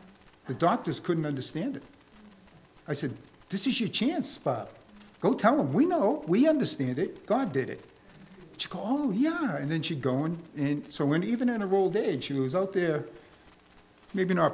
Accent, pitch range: American, 120-175 Hz